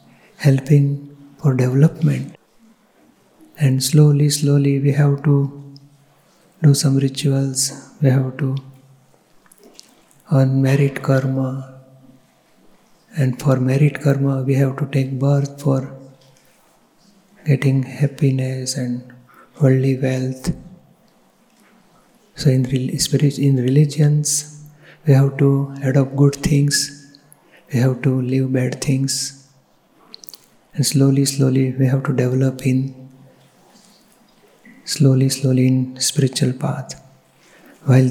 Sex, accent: male, native